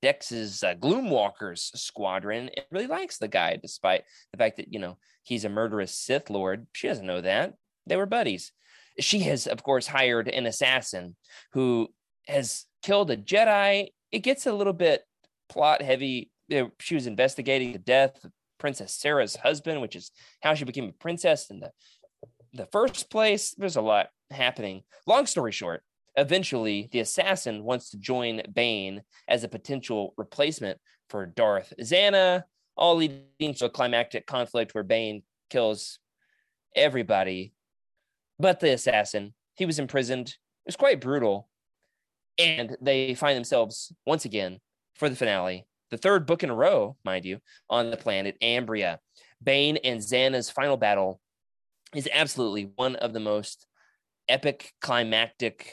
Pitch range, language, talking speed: 110-155 Hz, English, 155 wpm